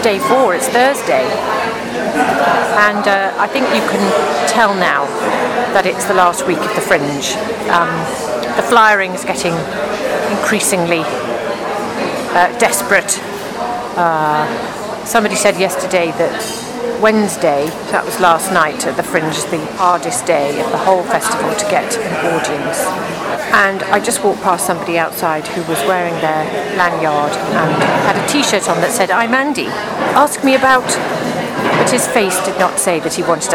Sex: female